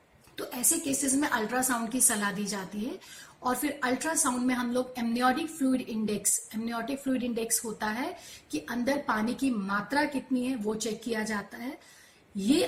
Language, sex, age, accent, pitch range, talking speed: Hindi, female, 40-59, native, 220-270 Hz, 160 wpm